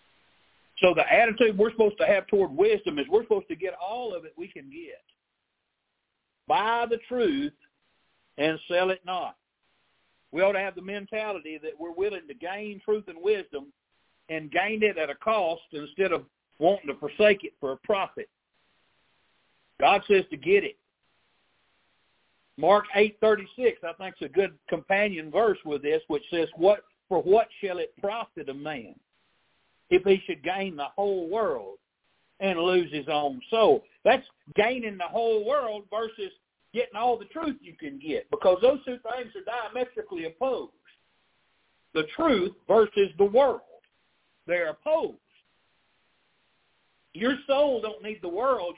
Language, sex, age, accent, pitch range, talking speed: English, male, 60-79, American, 195-290 Hz, 160 wpm